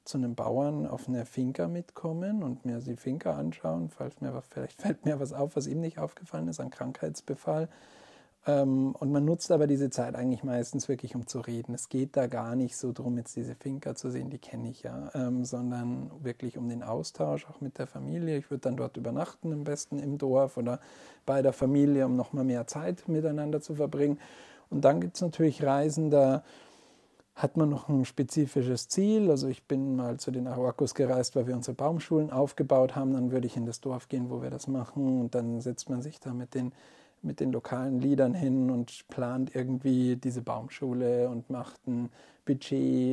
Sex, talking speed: male, 200 wpm